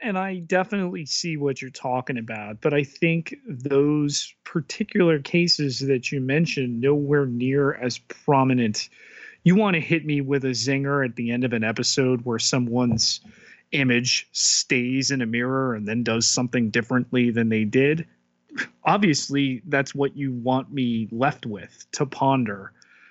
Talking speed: 155 wpm